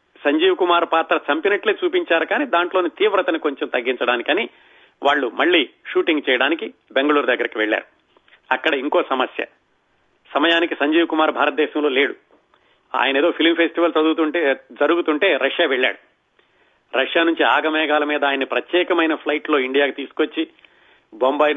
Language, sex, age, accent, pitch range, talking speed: Telugu, male, 40-59, native, 145-170 Hz, 120 wpm